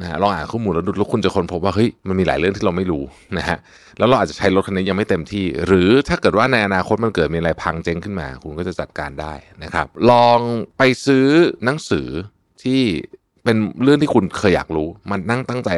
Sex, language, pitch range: male, Thai, 85-115 Hz